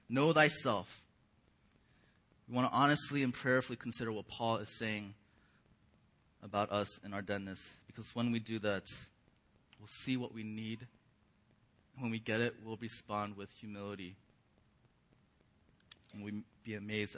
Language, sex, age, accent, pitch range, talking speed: English, male, 30-49, American, 105-130 Hz, 140 wpm